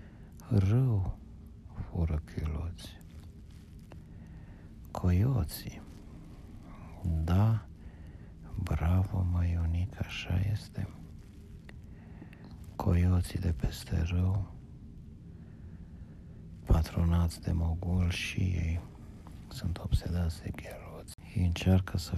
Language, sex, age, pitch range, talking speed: Romanian, male, 60-79, 80-100 Hz, 70 wpm